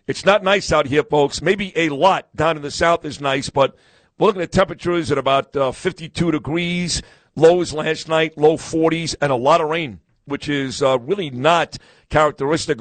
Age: 50-69